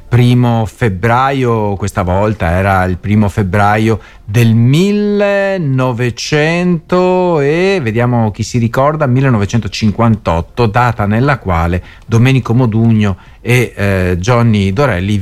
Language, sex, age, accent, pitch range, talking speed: Italian, male, 50-69, native, 100-145 Hz, 100 wpm